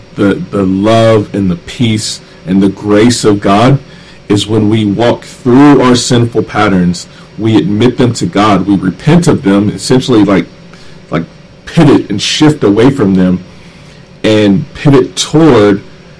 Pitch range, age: 100-130 Hz, 40-59